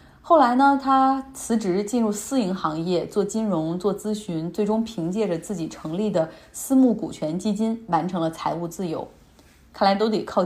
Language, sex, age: Chinese, female, 20-39